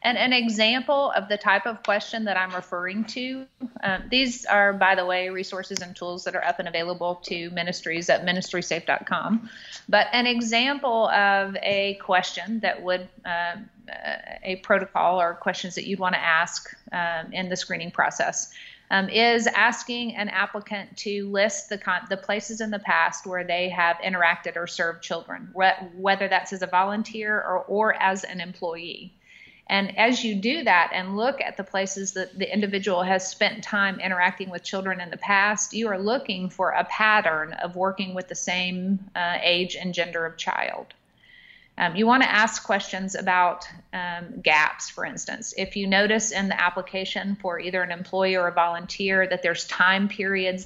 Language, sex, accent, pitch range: English, female, American, 180-215 Hz